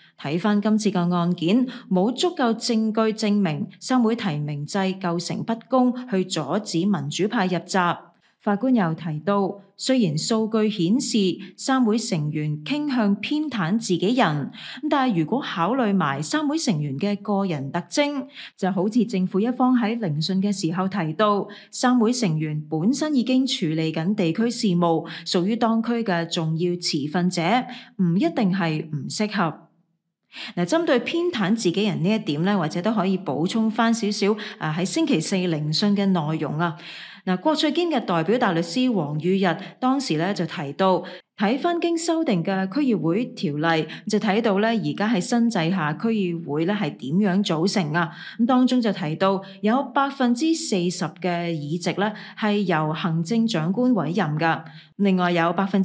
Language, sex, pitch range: Chinese, female, 170-230 Hz